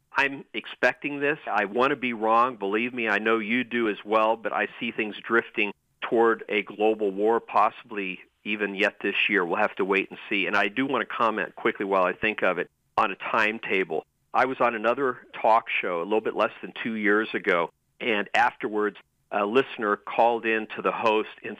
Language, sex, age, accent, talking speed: English, male, 50-69, American, 210 wpm